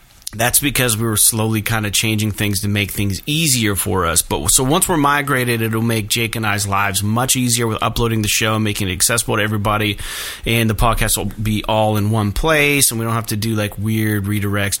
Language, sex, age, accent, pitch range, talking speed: English, male, 30-49, American, 105-125 Hz, 225 wpm